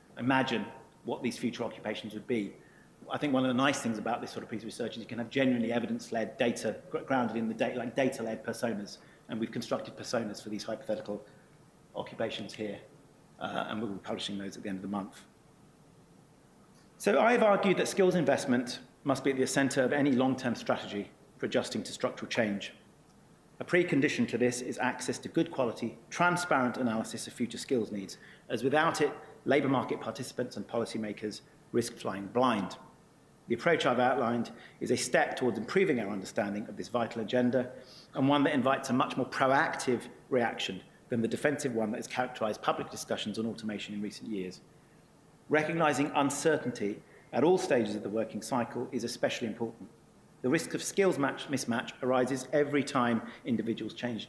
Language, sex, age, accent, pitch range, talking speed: English, male, 40-59, British, 110-140 Hz, 180 wpm